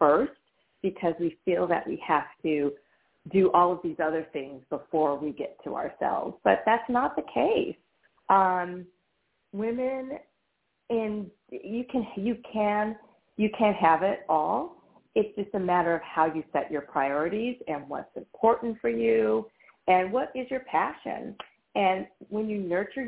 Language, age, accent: English, 40-59, American